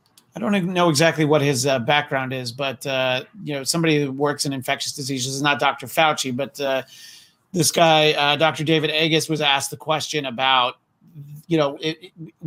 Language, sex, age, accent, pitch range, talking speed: English, male, 30-49, American, 135-160 Hz, 195 wpm